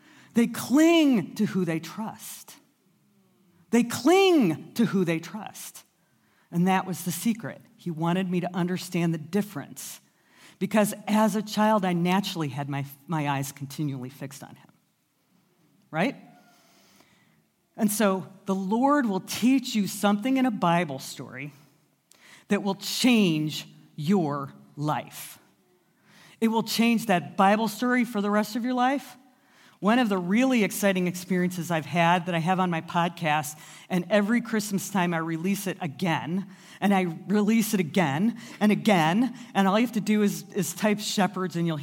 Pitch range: 175-215 Hz